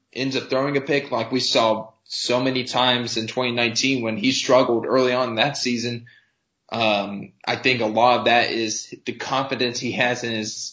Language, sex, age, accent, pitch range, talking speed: English, male, 20-39, American, 110-130 Hz, 195 wpm